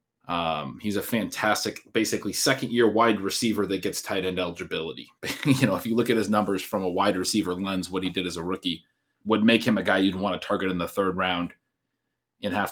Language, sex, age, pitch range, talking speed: English, male, 30-49, 95-110 Hz, 225 wpm